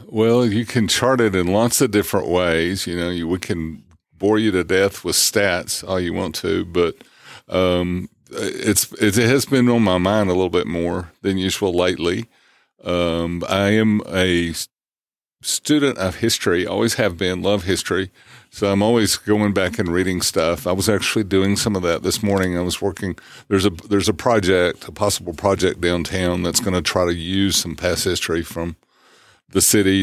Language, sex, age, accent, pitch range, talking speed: English, male, 50-69, American, 90-105 Hz, 190 wpm